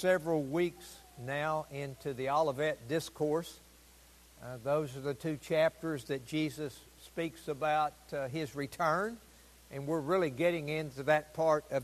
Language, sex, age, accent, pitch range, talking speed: English, male, 60-79, American, 140-190 Hz, 140 wpm